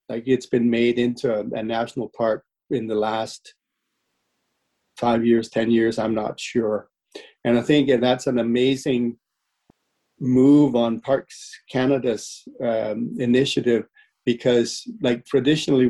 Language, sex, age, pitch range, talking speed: English, male, 40-59, 120-140 Hz, 130 wpm